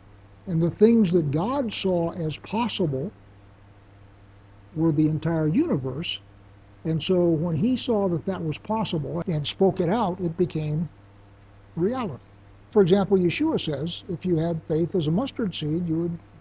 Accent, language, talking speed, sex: American, English, 155 wpm, male